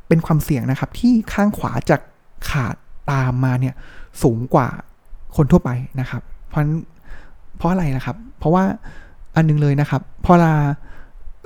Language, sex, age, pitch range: Thai, male, 20-39, 140-180 Hz